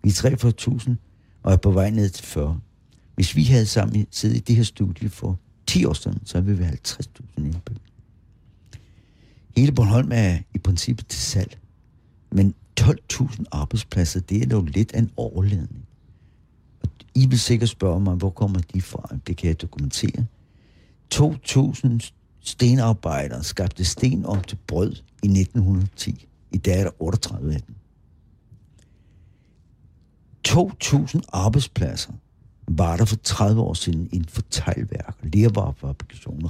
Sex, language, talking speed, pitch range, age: male, Danish, 145 wpm, 90-115 Hz, 60-79